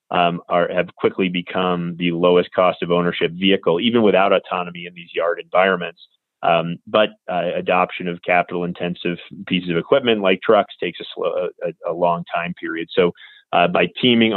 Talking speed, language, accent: 165 wpm, English, American